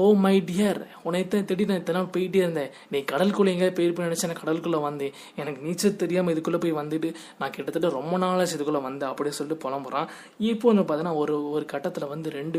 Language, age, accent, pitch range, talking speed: Tamil, 20-39, native, 145-190 Hz, 155 wpm